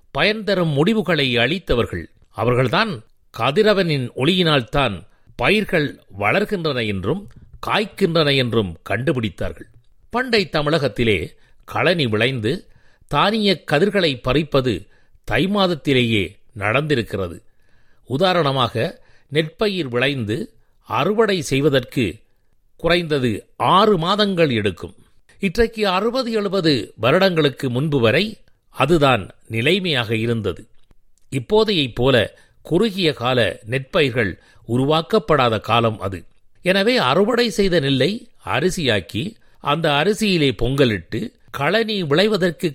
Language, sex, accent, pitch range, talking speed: Tamil, male, native, 115-185 Hz, 80 wpm